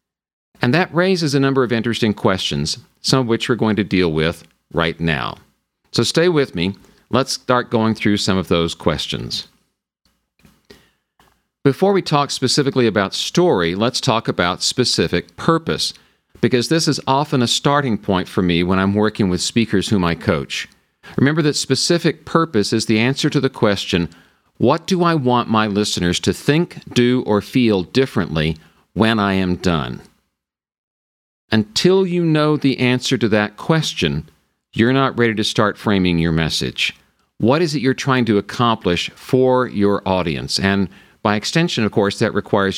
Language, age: English, 50-69